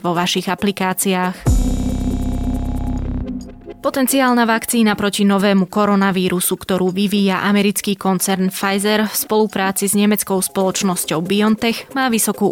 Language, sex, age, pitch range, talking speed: Slovak, female, 20-39, 185-215 Hz, 100 wpm